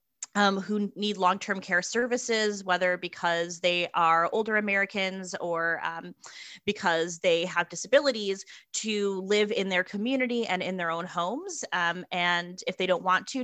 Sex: female